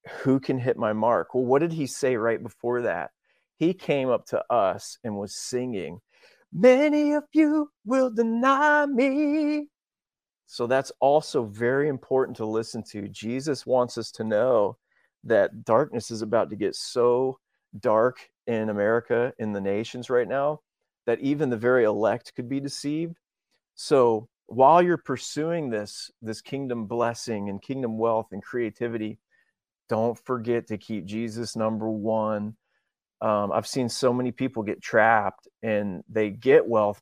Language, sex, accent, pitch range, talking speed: English, male, American, 110-140 Hz, 155 wpm